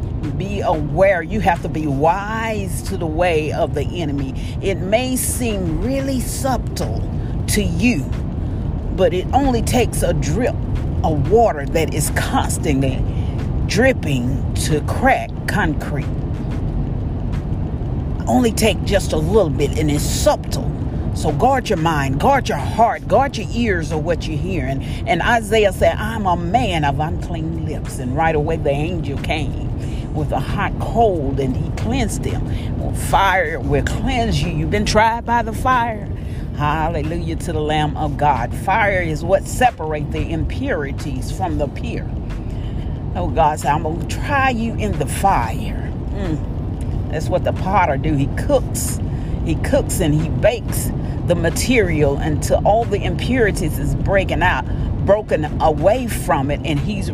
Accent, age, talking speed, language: American, 40-59, 150 wpm, English